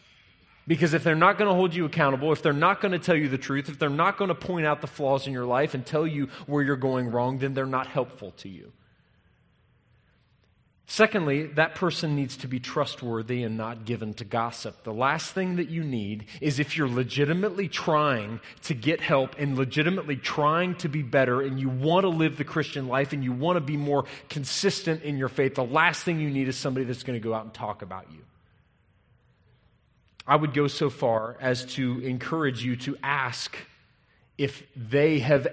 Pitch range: 115-150 Hz